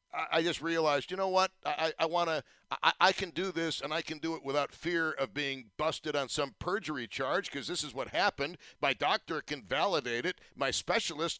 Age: 50-69